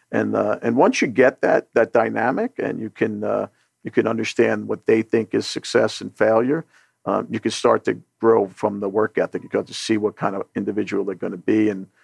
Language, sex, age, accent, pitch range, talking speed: English, male, 50-69, American, 105-120 Hz, 230 wpm